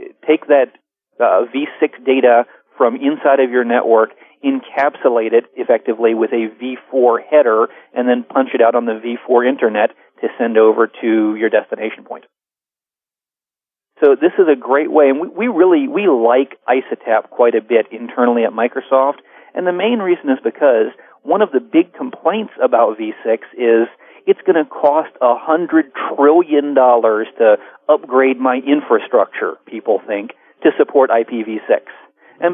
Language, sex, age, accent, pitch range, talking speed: English, male, 40-59, American, 120-170 Hz, 150 wpm